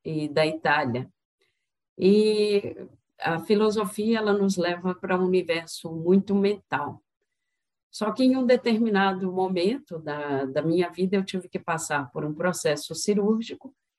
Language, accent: Portuguese, Brazilian